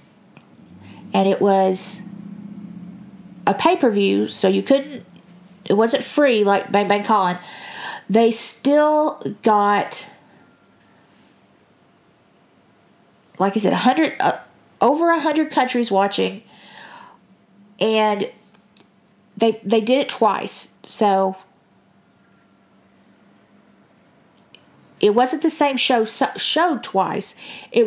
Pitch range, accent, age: 200-275 Hz, American, 40-59